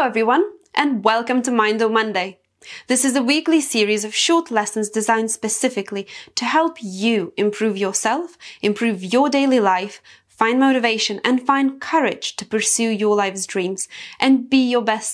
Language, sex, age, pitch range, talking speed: English, female, 20-39, 210-270 Hz, 165 wpm